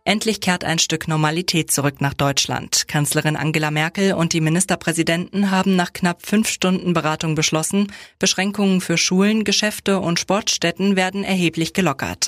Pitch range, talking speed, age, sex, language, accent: 155-185 Hz, 145 wpm, 20-39, female, German, German